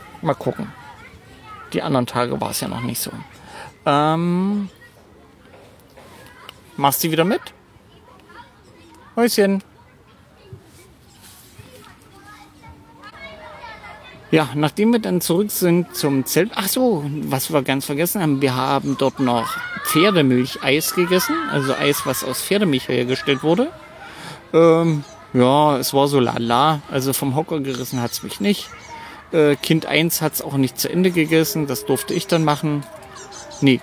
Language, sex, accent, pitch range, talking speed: German, male, German, 130-170 Hz, 135 wpm